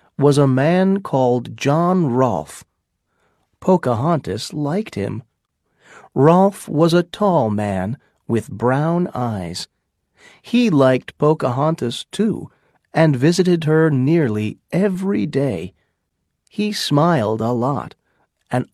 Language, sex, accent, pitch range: Chinese, male, American, 120-170 Hz